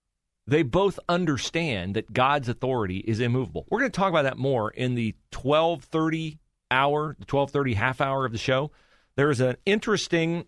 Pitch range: 100-135 Hz